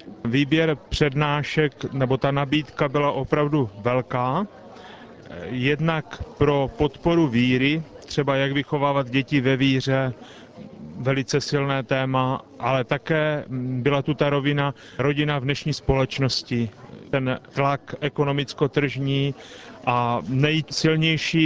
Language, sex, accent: Czech, male, native